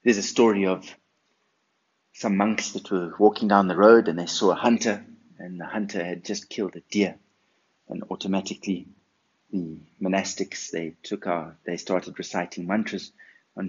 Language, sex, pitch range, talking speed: English, male, 90-105 Hz, 160 wpm